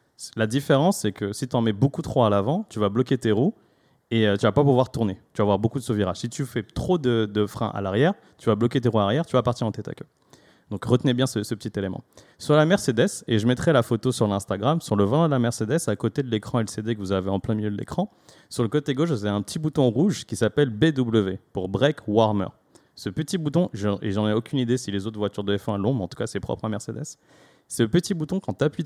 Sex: male